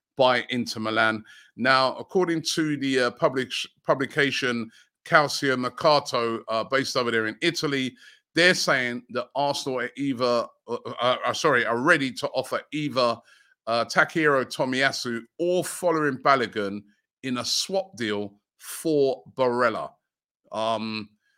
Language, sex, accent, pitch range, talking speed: English, male, British, 115-140 Hz, 130 wpm